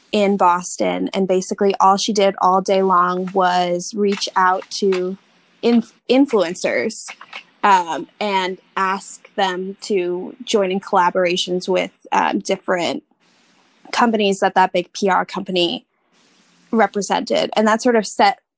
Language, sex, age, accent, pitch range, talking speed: English, female, 20-39, American, 185-205 Hz, 125 wpm